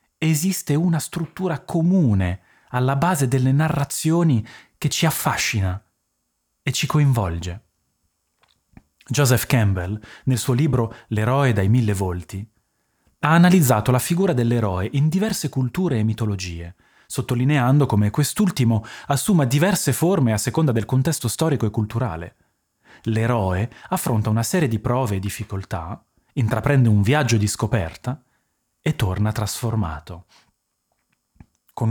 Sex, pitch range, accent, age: male, 105-145 Hz, native, 30-49